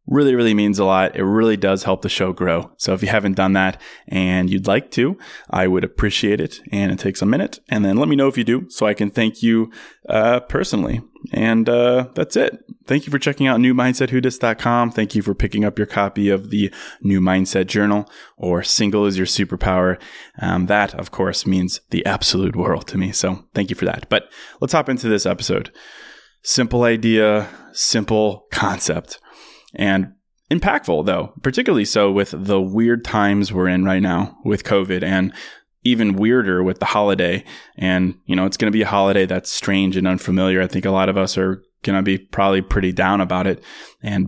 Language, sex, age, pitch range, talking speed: English, male, 20-39, 95-110 Hz, 200 wpm